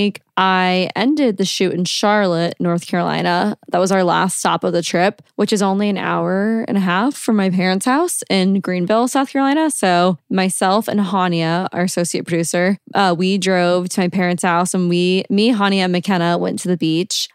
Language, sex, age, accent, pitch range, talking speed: English, female, 20-39, American, 180-210 Hz, 195 wpm